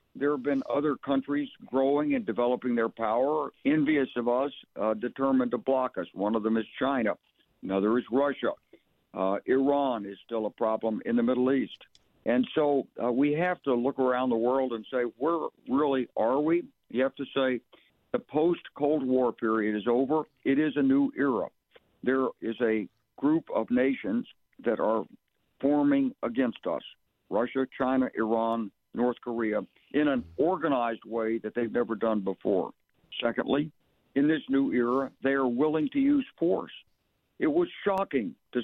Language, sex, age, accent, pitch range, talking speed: English, male, 60-79, American, 120-155 Hz, 165 wpm